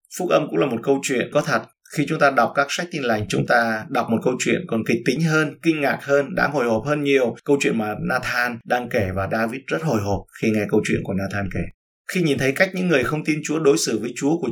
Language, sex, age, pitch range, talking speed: Vietnamese, male, 20-39, 115-150 Hz, 275 wpm